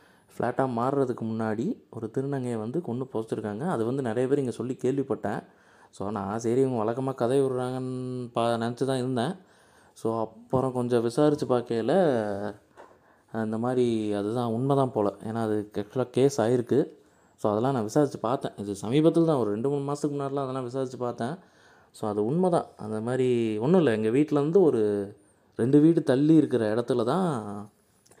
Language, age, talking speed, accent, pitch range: Tamil, 20-39, 150 wpm, native, 110-140 Hz